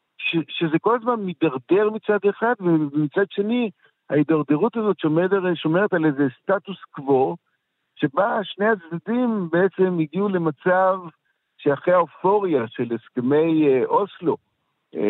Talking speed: 105 wpm